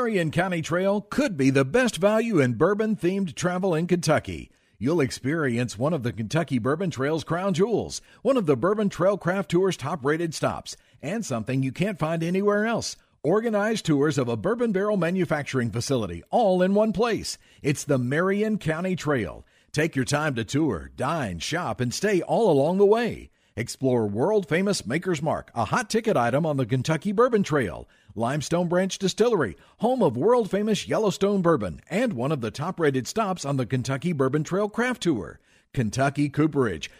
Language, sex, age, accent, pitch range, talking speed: English, male, 50-69, American, 135-195 Hz, 170 wpm